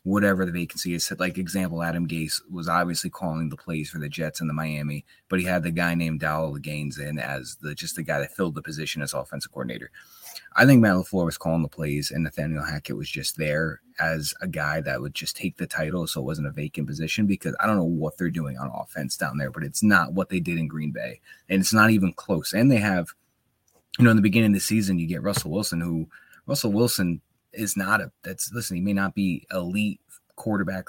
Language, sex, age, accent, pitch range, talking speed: English, male, 20-39, American, 80-100 Hz, 240 wpm